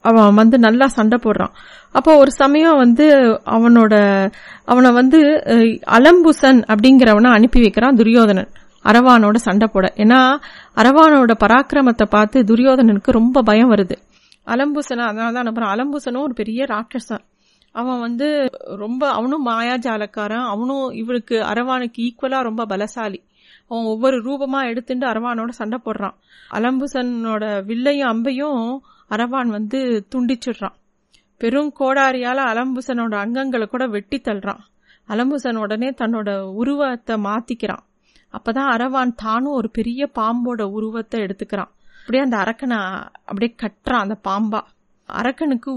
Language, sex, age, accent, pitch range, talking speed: Tamil, female, 30-49, native, 215-260 Hz, 100 wpm